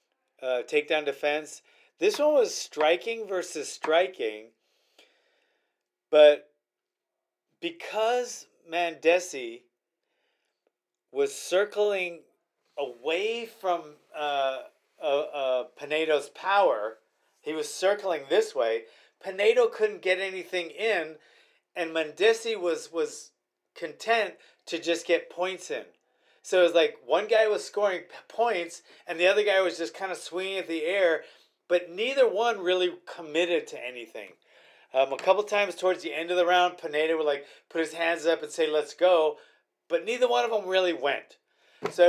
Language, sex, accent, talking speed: English, male, American, 140 wpm